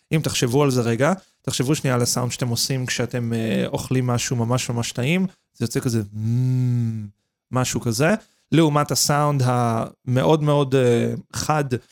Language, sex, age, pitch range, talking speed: Hebrew, male, 30-49, 125-155 Hz, 140 wpm